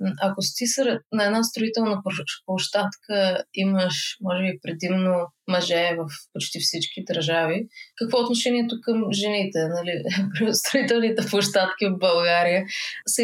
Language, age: Bulgarian, 20-39